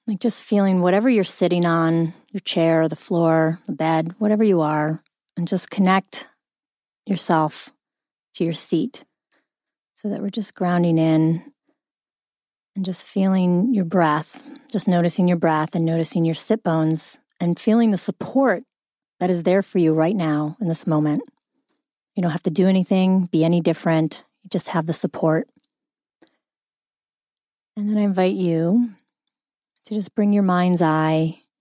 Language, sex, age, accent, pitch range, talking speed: English, female, 30-49, American, 165-215 Hz, 155 wpm